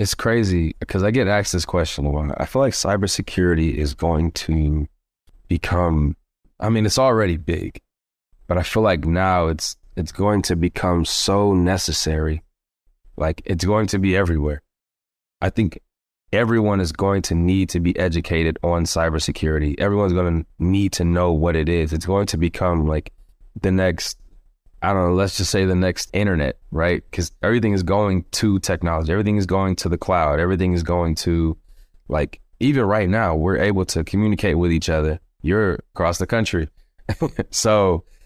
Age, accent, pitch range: 20-39, American, 80-95 Hz